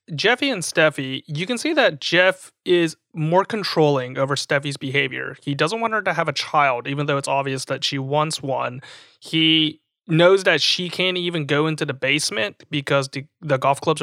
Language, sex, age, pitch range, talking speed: English, male, 30-49, 140-180 Hz, 195 wpm